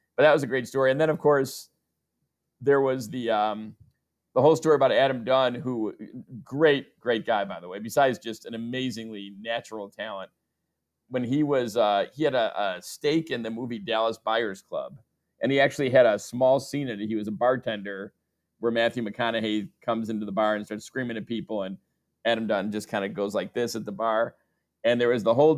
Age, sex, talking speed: 50-69, male, 210 wpm